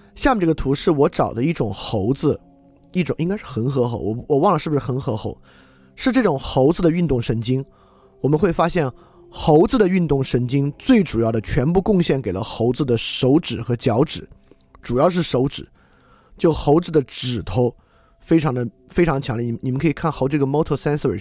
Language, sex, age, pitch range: Chinese, male, 20-39, 115-170 Hz